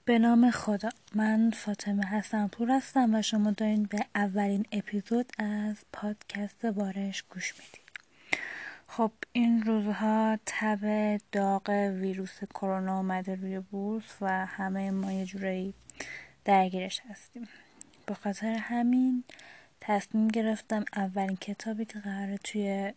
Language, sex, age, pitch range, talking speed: Persian, female, 20-39, 200-215 Hz, 120 wpm